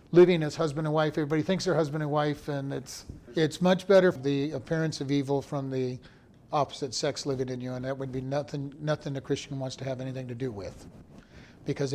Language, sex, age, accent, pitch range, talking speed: English, male, 40-59, American, 140-165 Hz, 220 wpm